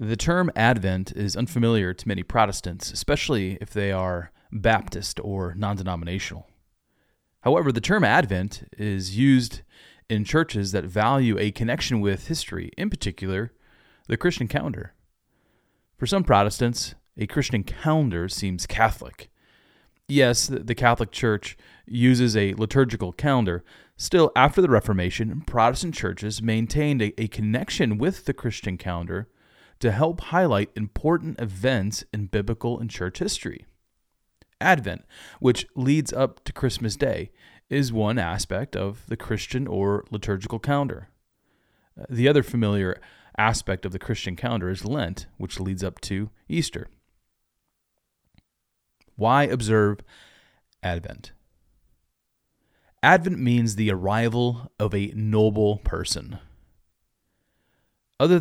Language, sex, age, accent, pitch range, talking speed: English, male, 30-49, American, 95-125 Hz, 120 wpm